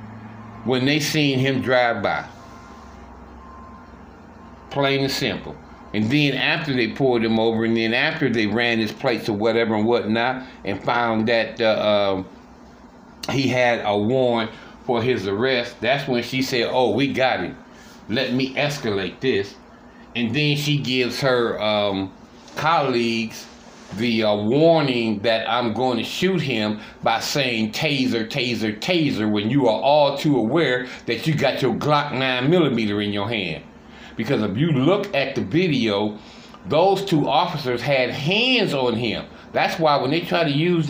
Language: English